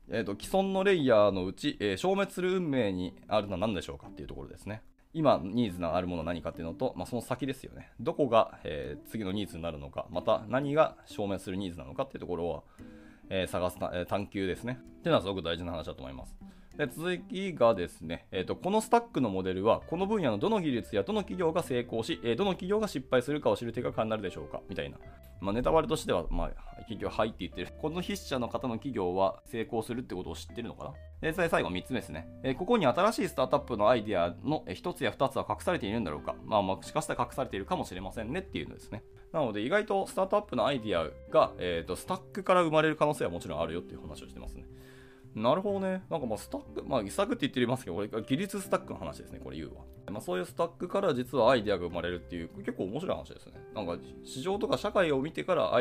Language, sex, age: Japanese, male, 20-39